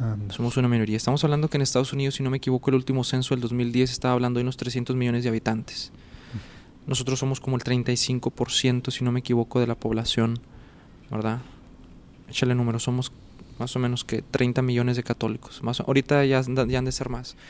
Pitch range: 120-130 Hz